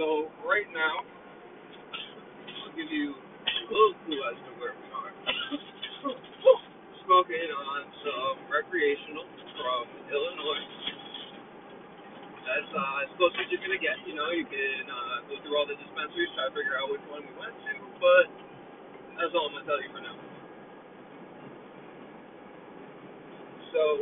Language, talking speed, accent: English, 145 wpm, American